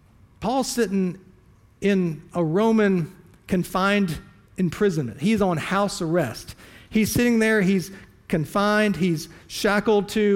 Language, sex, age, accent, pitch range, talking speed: English, male, 40-59, American, 125-185 Hz, 110 wpm